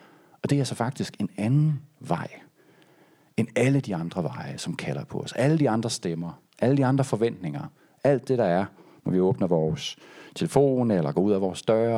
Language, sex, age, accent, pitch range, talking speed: Danish, male, 40-59, native, 110-145 Hz, 200 wpm